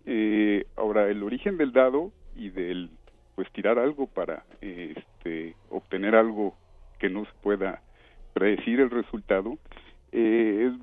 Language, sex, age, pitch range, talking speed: Spanish, male, 50-69, 100-140 Hz, 140 wpm